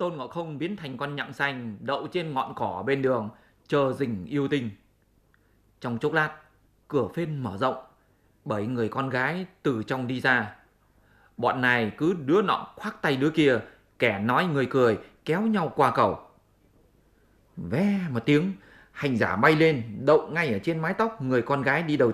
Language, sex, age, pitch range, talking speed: English, male, 20-39, 125-175 Hz, 185 wpm